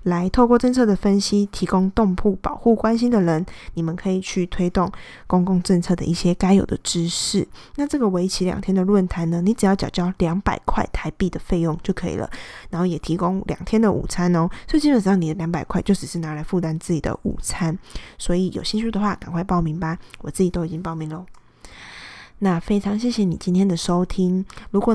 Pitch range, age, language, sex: 175-205 Hz, 20-39, Chinese, female